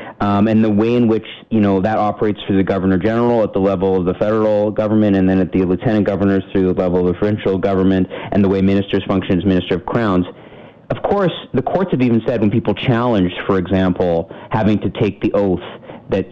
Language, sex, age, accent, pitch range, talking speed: English, male, 30-49, American, 95-110 Hz, 225 wpm